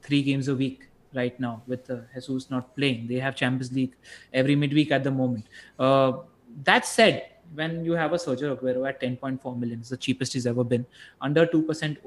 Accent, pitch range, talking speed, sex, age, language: Indian, 130-155 Hz, 200 wpm, male, 20-39, English